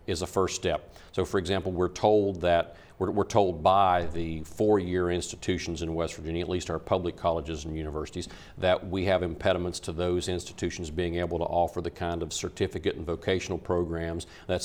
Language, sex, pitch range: English, male, 85-95 Hz